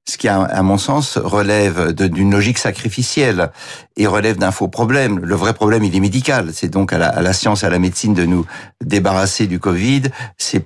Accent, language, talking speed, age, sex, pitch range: French, French, 195 wpm, 60-79, male, 100-130 Hz